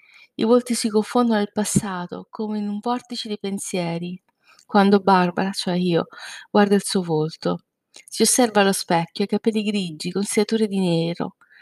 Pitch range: 185-225 Hz